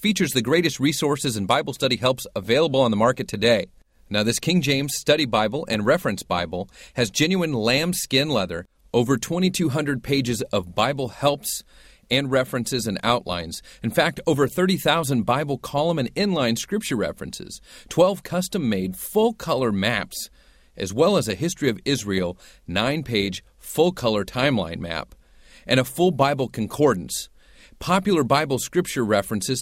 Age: 40-59